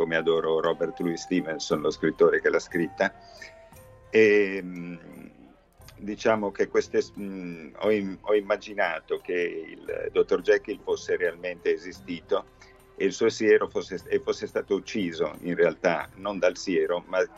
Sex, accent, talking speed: male, native, 130 wpm